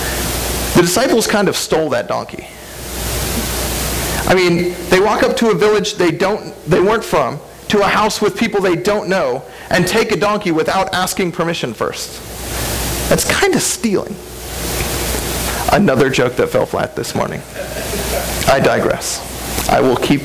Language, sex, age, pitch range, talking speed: English, male, 40-59, 165-205 Hz, 155 wpm